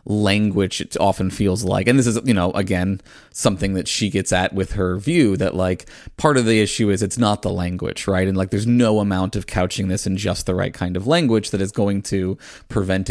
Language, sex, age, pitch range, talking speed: English, male, 20-39, 95-110 Hz, 235 wpm